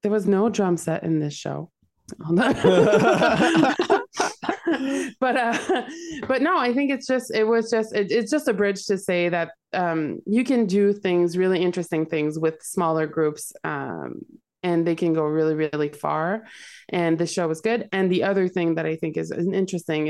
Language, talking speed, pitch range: English, 180 wpm, 155-195 Hz